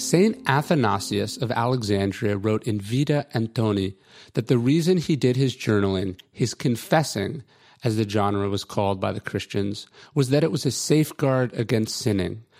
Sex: male